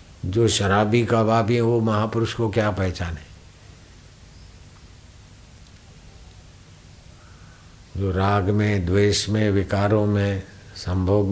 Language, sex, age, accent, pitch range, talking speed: Hindi, male, 60-79, native, 95-110 Hz, 95 wpm